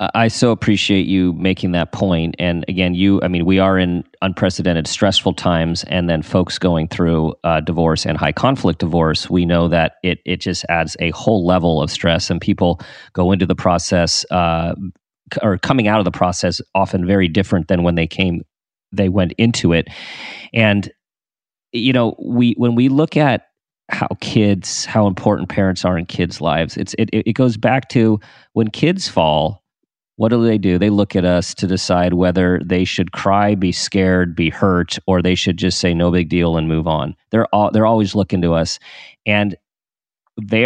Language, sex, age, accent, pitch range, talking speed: English, male, 40-59, American, 85-105 Hz, 185 wpm